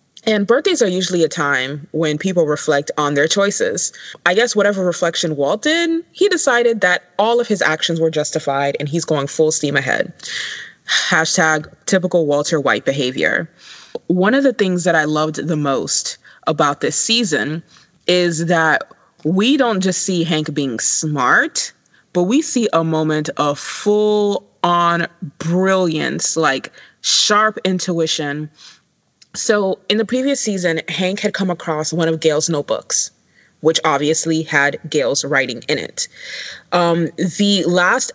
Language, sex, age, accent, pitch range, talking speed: English, female, 20-39, American, 155-190 Hz, 150 wpm